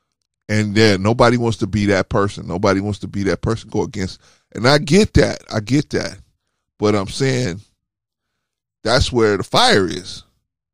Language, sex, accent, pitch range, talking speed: English, male, American, 95-125 Hz, 180 wpm